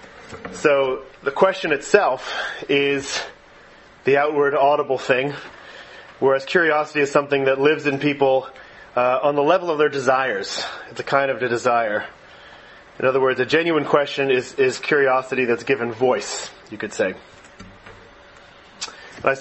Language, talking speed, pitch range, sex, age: English, 140 wpm, 125-140 Hz, male, 30-49